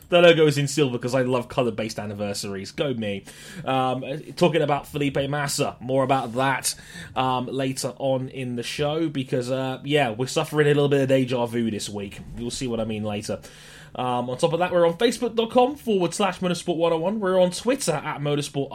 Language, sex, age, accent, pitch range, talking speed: English, male, 20-39, British, 125-160 Hz, 200 wpm